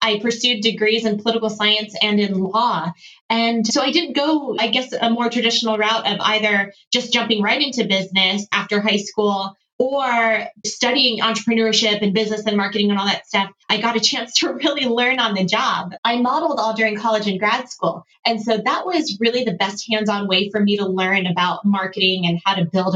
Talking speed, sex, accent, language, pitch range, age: 205 wpm, female, American, English, 200-240 Hz, 20-39